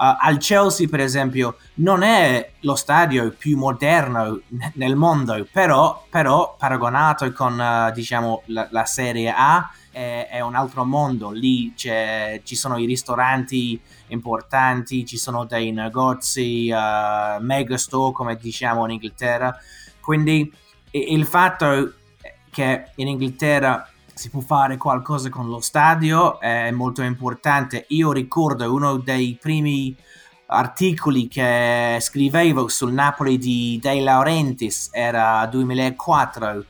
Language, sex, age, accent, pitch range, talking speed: Italian, male, 20-39, native, 120-140 Hz, 130 wpm